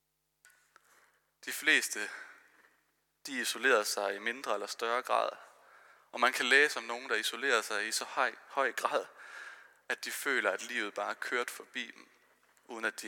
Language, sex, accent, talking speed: Danish, male, native, 165 wpm